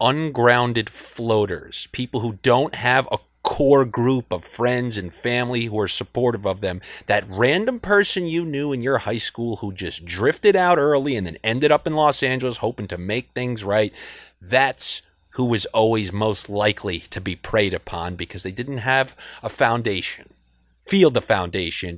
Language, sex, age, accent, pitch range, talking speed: English, male, 30-49, American, 100-140 Hz, 170 wpm